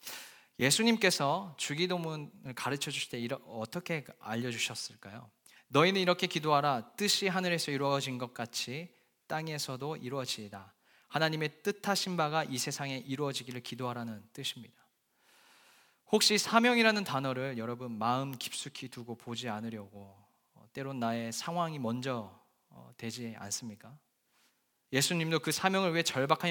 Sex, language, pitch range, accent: male, Korean, 120-170 Hz, native